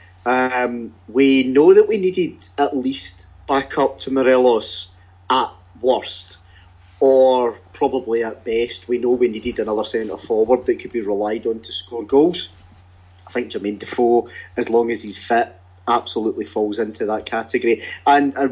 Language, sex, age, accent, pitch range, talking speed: English, male, 30-49, British, 95-130 Hz, 155 wpm